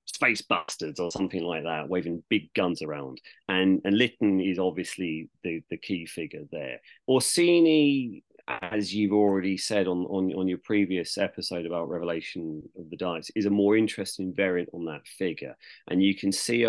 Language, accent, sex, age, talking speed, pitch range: English, British, male, 30-49, 175 wpm, 85-105 Hz